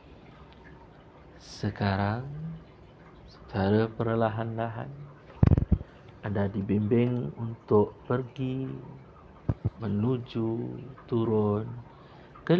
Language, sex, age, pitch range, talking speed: Malay, male, 50-69, 100-130 Hz, 50 wpm